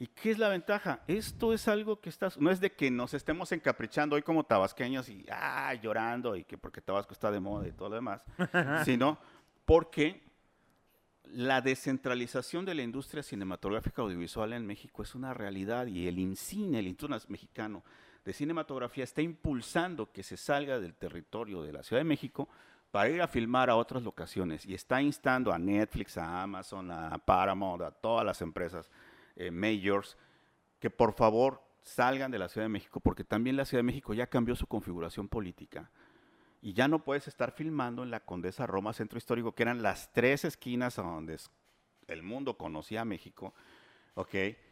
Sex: male